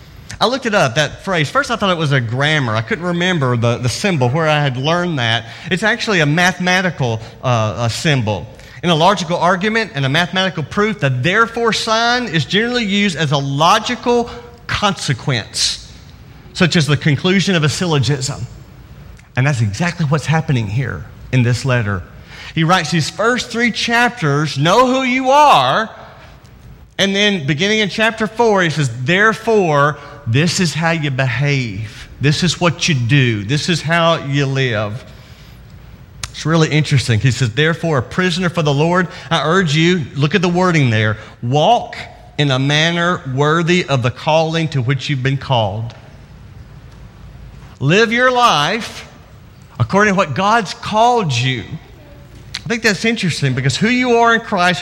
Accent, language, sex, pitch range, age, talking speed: American, English, male, 130-195 Hz, 40-59, 165 wpm